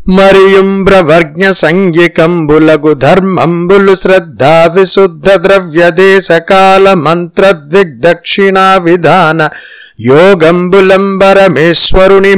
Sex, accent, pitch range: male, native, 165-195 Hz